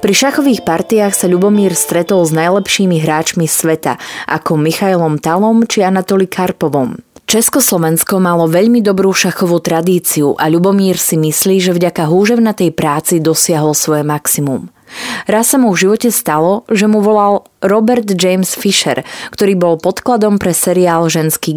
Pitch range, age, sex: 160-210 Hz, 20-39, female